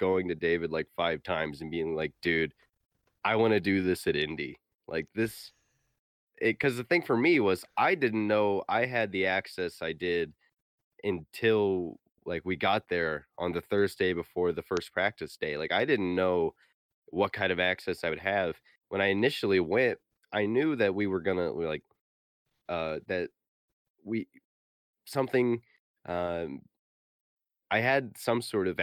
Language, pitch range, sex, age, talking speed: English, 90-115 Hz, male, 20-39, 165 wpm